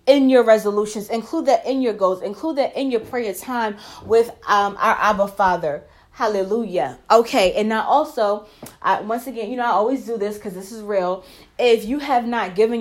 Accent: American